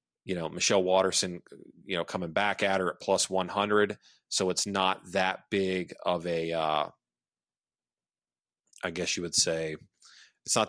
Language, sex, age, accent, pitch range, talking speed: English, male, 30-49, American, 85-105 Hz, 165 wpm